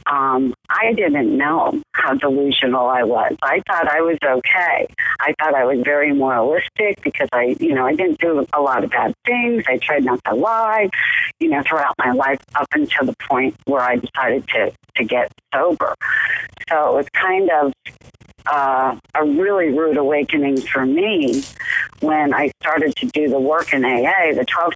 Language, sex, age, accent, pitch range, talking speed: English, female, 50-69, American, 135-225 Hz, 180 wpm